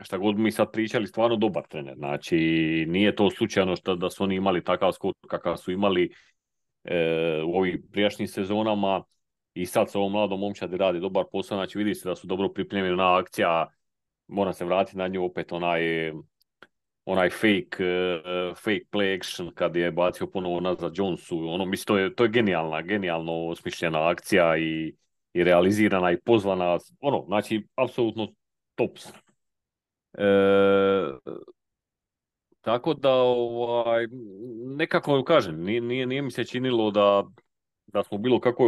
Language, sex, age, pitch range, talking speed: Croatian, male, 40-59, 95-120 Hz, 150 wpm